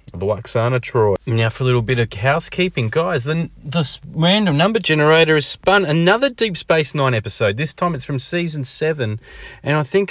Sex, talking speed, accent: male, 190 wpm, Australian